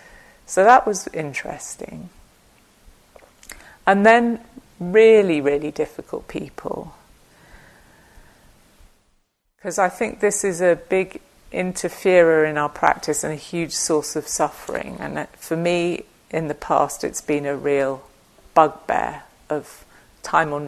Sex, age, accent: female, 40-59, British